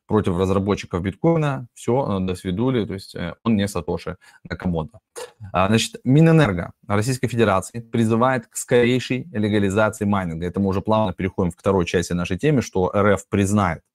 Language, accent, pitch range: Russian, native, 95-120 Hz